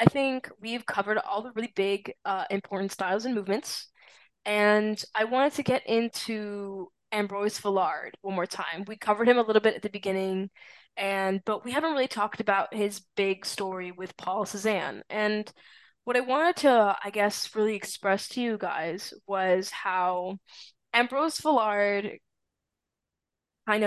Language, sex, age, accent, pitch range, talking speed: English, female, 10-29, American, 195-230 Hz, 160 wpm